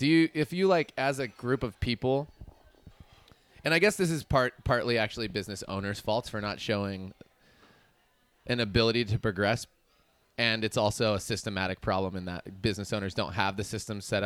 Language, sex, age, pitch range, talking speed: English, male, 20-39, 100-120 Hz, 180 wpm